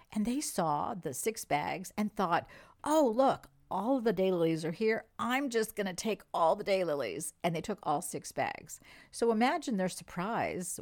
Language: English